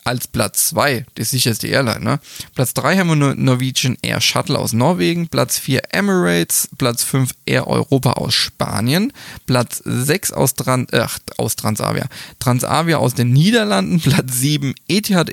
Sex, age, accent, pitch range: male, 20-39, German, 115-150 Hz